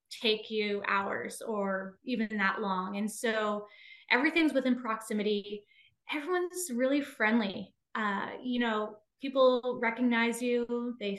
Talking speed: 120 wpm